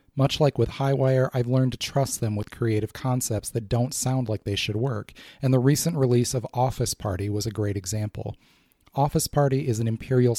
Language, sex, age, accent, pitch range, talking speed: English, male, 30-49, American, 110-130 Hz, 200 wpm